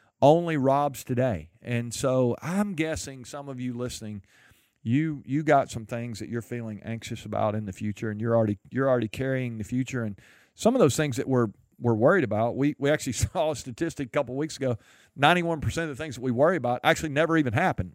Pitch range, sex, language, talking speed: 105-135 Hz, male, English, 215 wpm